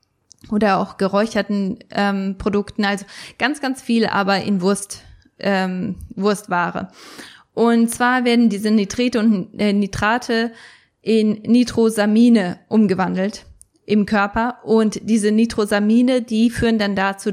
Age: 20-39